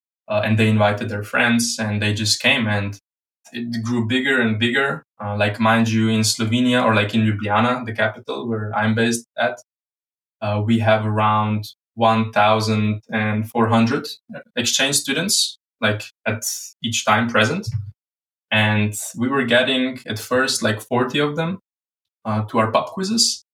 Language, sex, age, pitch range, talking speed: English, male, 20-39, 110-120 Hz, 150 wpm